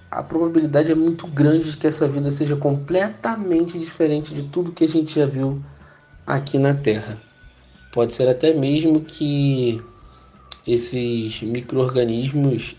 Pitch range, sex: 115-140 Hz, male